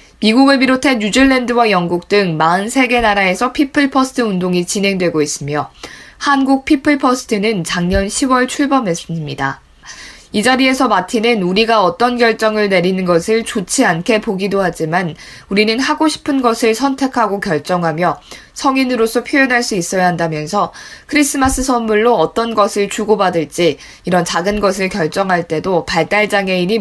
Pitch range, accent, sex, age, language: 180-235 Hz, native, female, 20-39, Korean